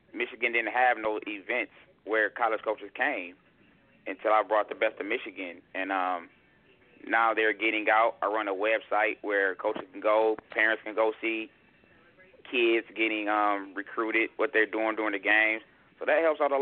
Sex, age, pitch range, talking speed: male, 30-49, 110-140 Hz, 175 wpm